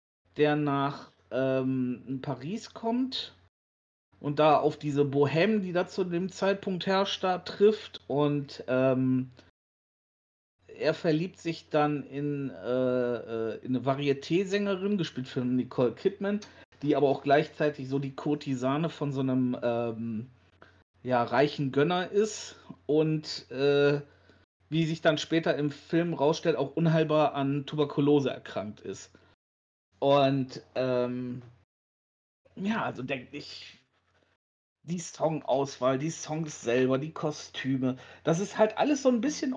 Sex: male